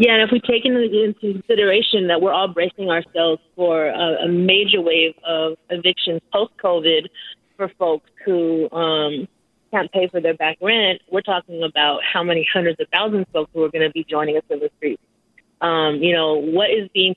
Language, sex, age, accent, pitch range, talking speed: English, female, 30-49, American, 160-195 Hz, 190 wpm